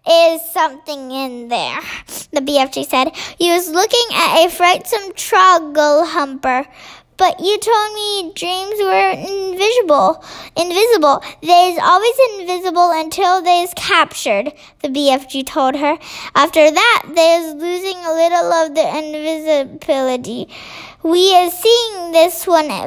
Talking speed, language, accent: 130 wpm, English, American